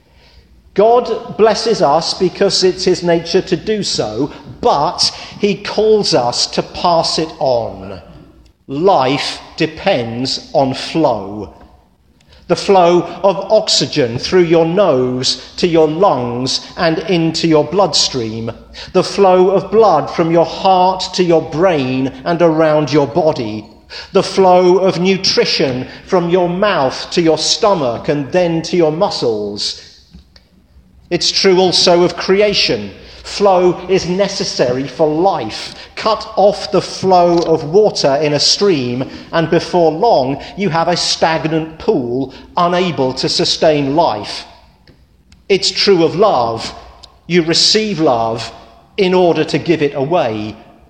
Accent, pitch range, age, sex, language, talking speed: British, 135-190 Hz, 50-69, male, English, 130 wpm